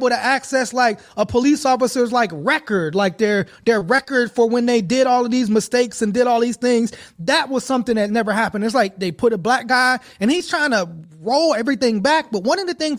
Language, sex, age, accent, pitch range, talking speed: English, male, 30-49, American, 215-255 Hz, 230 wpm